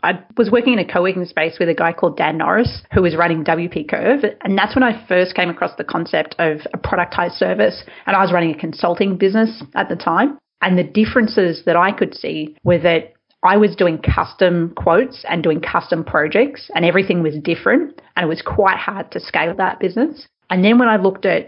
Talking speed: 220 wpm